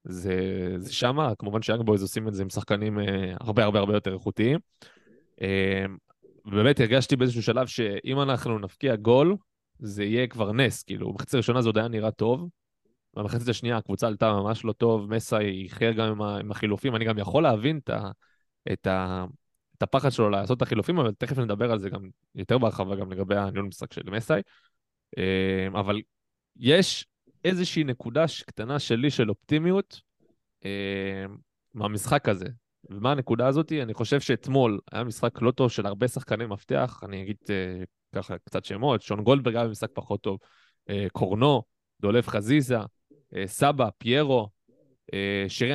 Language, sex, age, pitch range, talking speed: Hebrew, male, 20-39, 100-130 Hz, 130 wpm